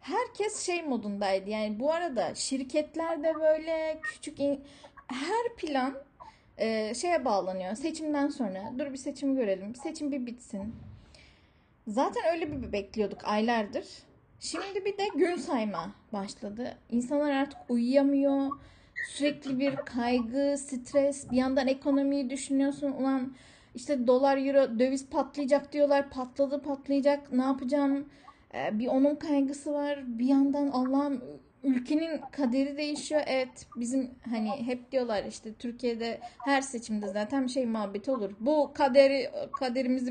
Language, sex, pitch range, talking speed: Turkish, female, 240-295 Hz, 125 wpm